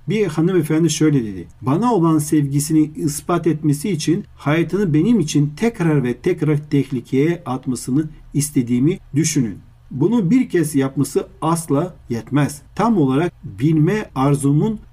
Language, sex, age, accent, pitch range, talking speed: Turkish, male, 50-69, native, 135-175 Hz, 120 wpm